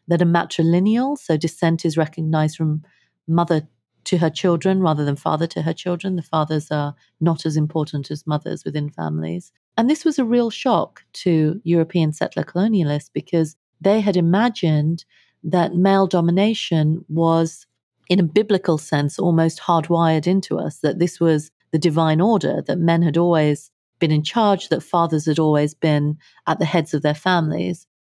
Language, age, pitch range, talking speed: English, 40-59, 155-185 Hz, 165 wpm